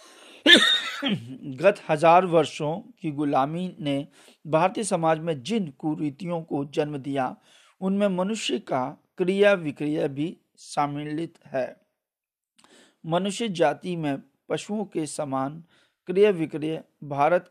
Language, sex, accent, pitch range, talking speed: Hindi, male, native, 145-180 Hz, 105 wpm